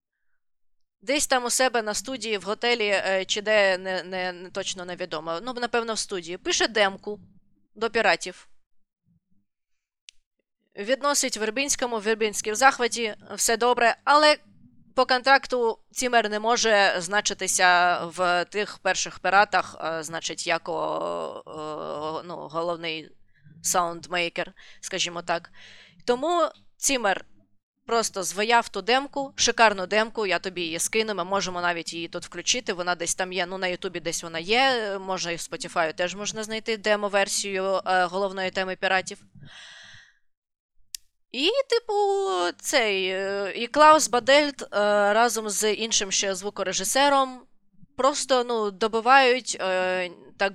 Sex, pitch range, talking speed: female, 180-235 Hz, 125 wpm